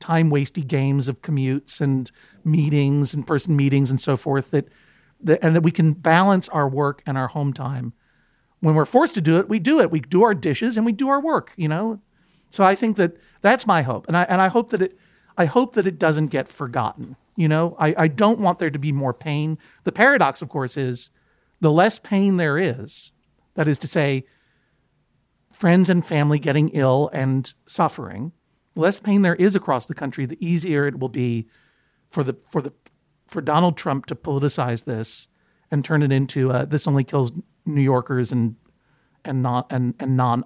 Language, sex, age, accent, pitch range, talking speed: English, male, 50-69, American, 135-170 Hz, 205 wpm